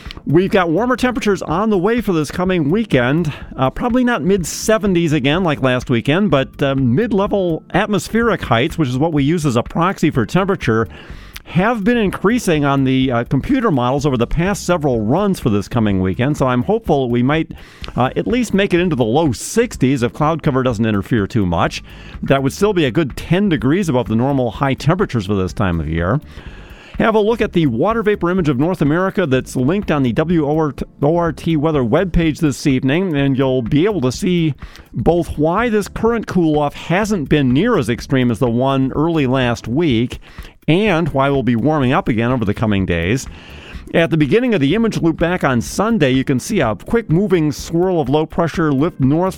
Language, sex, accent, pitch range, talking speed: English, male, American, 125-175 Hz, 200 wpm